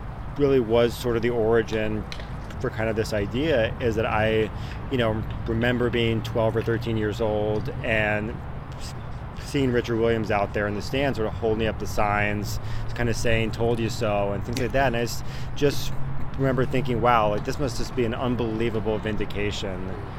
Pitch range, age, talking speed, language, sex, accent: 105-120 Hz, 30-49, 185 wpm, English, male, American